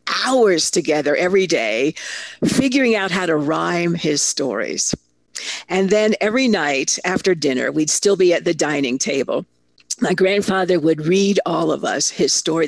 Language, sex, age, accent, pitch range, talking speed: English, female, 50-69, American, 150-200 Hz, 155 wpm